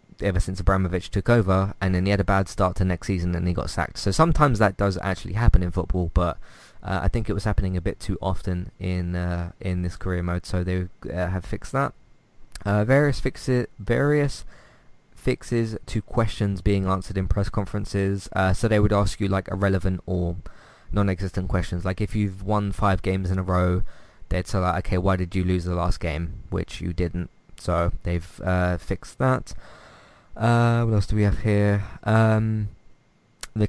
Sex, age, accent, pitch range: male, 20-39, British, 90-105 Hz